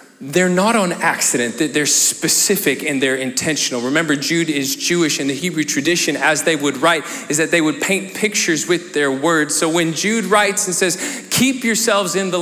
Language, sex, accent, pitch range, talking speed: English, male, American, 165-205 Hz, 195 wpm